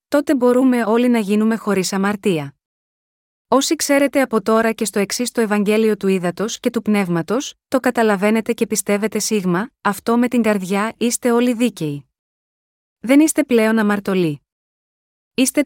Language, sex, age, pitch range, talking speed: Greek, female, 20-39, 205-245 Hz, 145 wpm